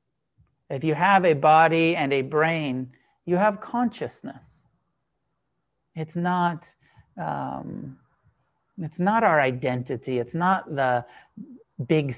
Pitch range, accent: 150-230 Hz, American